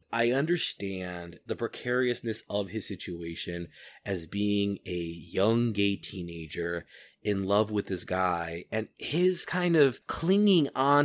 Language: English